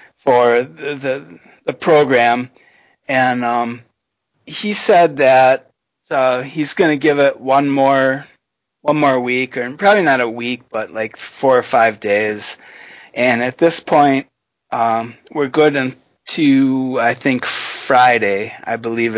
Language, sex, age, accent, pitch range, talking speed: English, male, 30-49, American, 120-145 Hz, 145 wpm